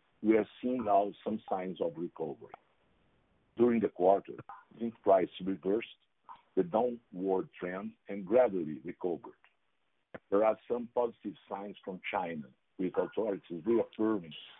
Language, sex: English, male